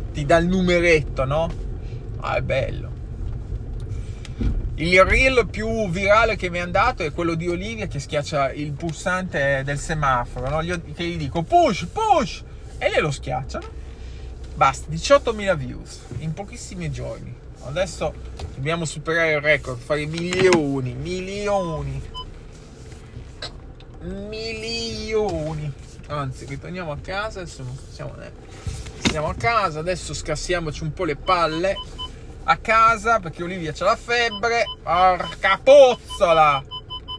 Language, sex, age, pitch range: Italian, male, 20-39, 135-195 Hz